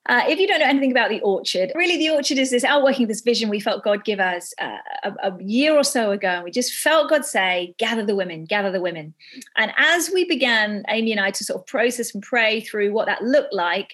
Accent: British